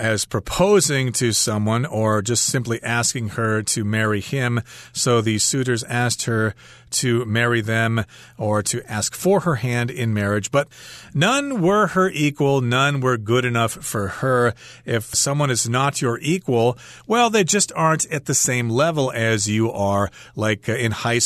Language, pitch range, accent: Chinese, 115-145 Hz, American